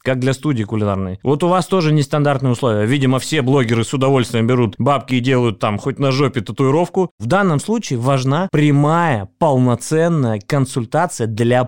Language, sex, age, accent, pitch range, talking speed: Russian, male, 20-39, native, 110-145 Hz, 165 wpm